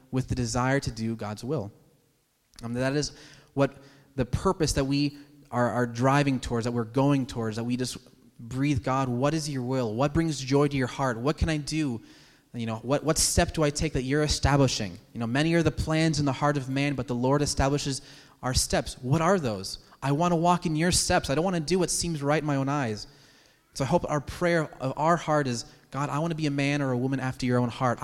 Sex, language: male, English